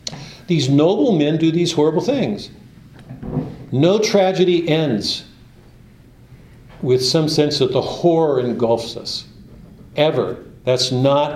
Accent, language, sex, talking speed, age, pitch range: American, English, male, 110 wpm, 50-69, 130-170 Hz